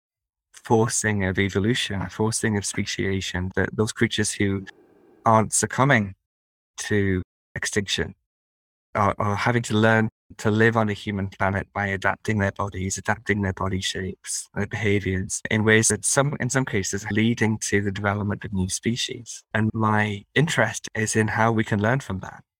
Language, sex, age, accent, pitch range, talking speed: English, male, 20-39, British, 95-110 Hz, 160 wpm